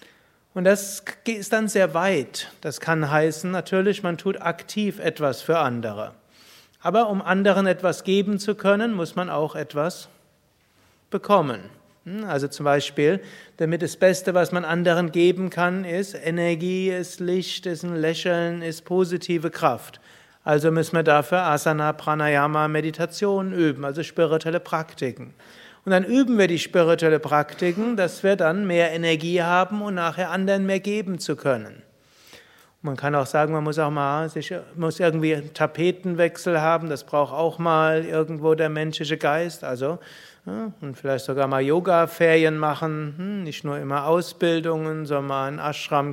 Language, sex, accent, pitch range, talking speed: German, male, German, 150-185 Hz, 155 wpm